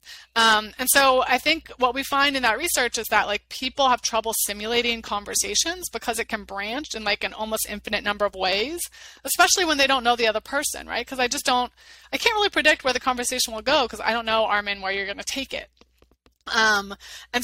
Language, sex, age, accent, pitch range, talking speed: English, female, 20-39, American, 210-260 Hz, 225 wpm